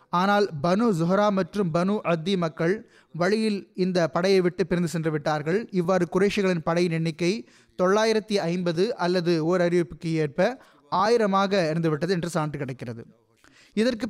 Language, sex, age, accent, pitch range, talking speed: Tamil, male, 20-39, native, 170-210 Hz, 125 wpm